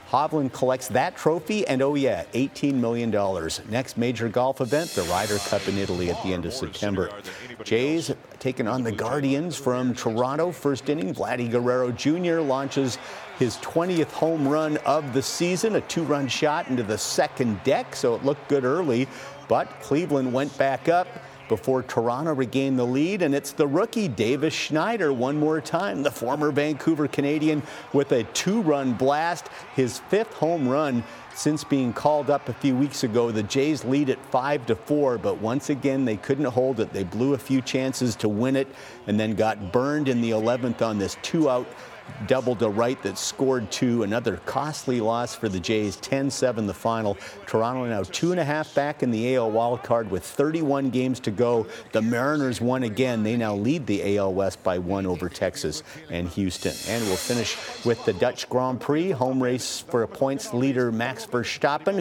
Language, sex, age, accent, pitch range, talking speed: English, male, 50-69, American, 115-145 Hz, 185 wpm